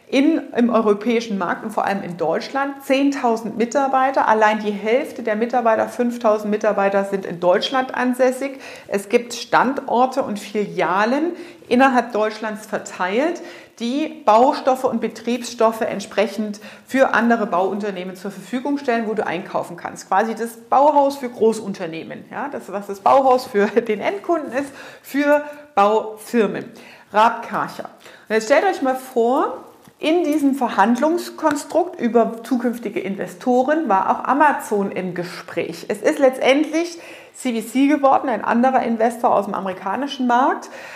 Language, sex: German, female